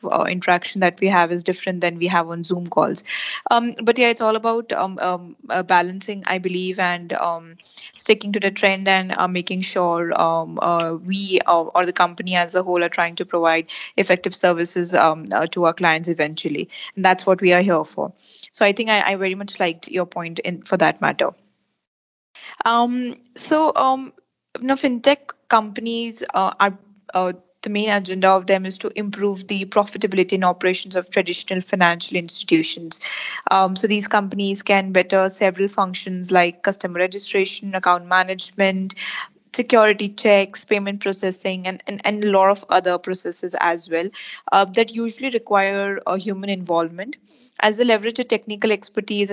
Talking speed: 175 wpm